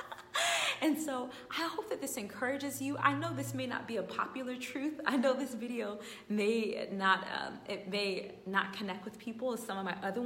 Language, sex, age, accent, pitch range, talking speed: English, female, 20-39, American, 195-270 Hz, 205 wpm